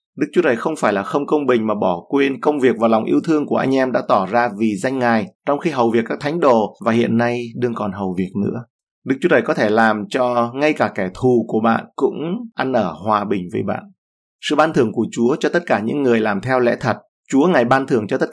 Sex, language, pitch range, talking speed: male, Vietnamese, 105-130 Hz, 270 wpm